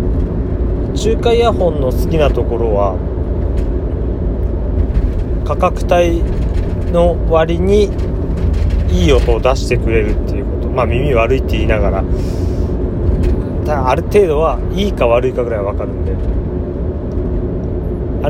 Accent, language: native, Japanese